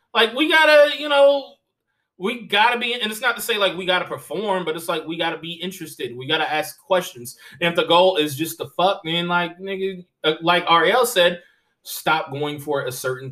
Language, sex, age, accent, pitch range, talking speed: English, male, 20-39, American, 125-185 Hz, 210 wpm